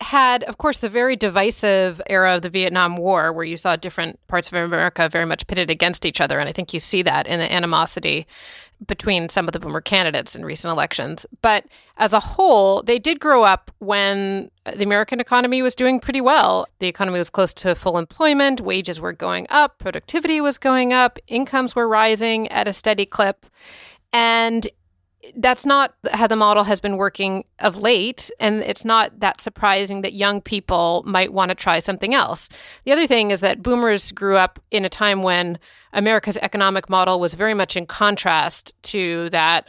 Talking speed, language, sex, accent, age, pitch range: 190 wpm, English, female, American, 30-49, 175-220 Hz